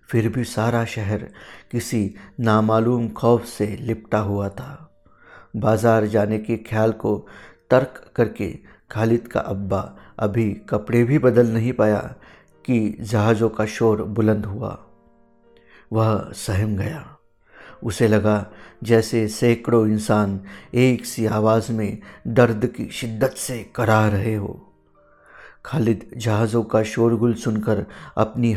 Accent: native